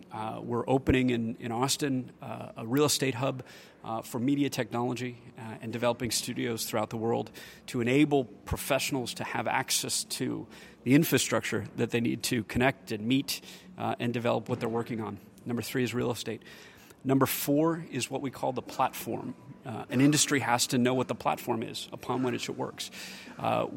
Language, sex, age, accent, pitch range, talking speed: English, male, 30-49, American, 120-140 Hz, 185 wpm